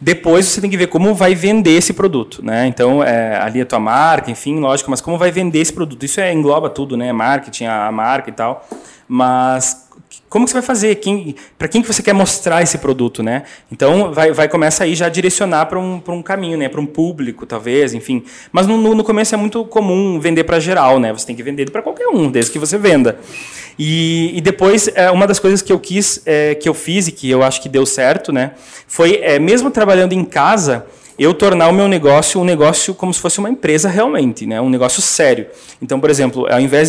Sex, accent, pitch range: male, Brazilian, 140-195 Hz